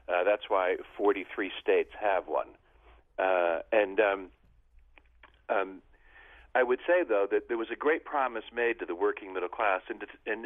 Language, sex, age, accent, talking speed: English, male, 50-69, American, 165 wpm